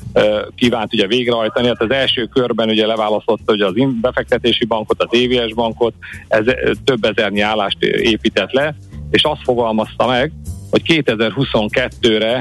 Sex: male